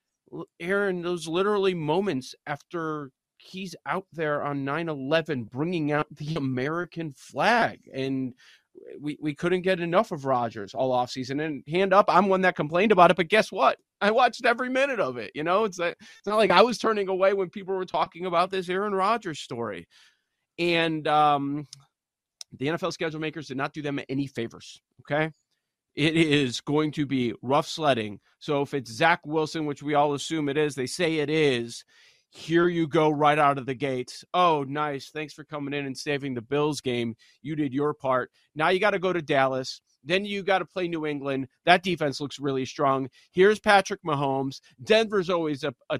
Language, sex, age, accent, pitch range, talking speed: English, male, 30-49, American, 140-175 Hz, 190 wpm